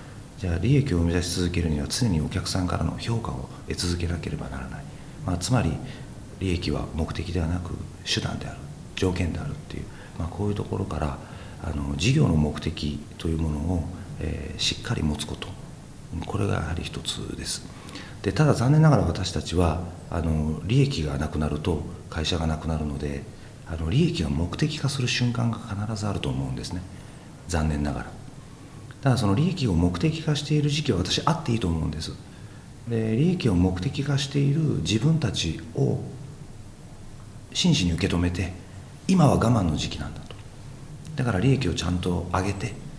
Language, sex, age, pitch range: Japanese, male, 40-59, 80-125 Hz